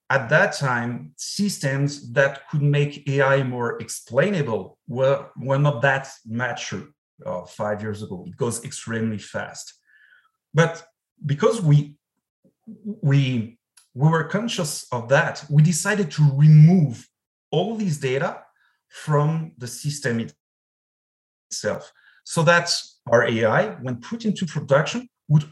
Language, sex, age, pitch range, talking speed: English, male, 40-59, 135-180 Hz, 120 wpm